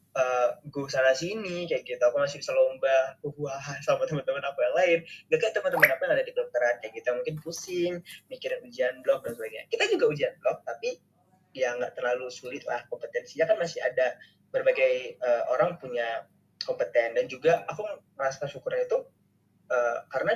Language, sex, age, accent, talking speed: Indonesian, male, 20-39, native, 180 wpm